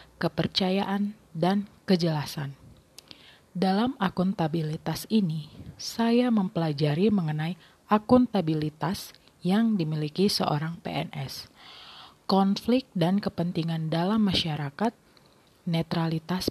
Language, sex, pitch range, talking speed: Indonesian, female, 160-200 Hz, 75 wpm